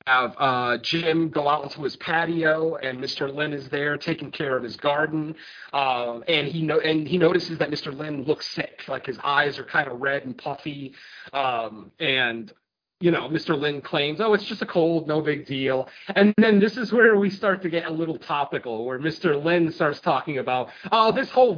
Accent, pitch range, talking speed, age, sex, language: American, 135-175 Hz, 210 wpm, 30-49, male, English